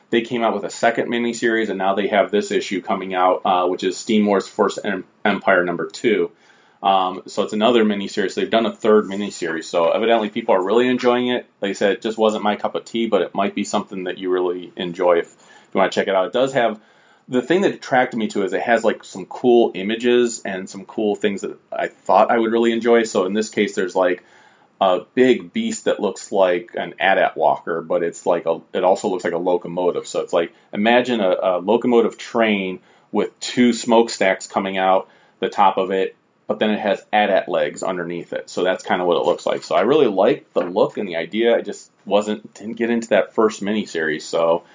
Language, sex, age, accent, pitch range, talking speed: English, male, 30-49, American, 95-120 Hz, 235 wpm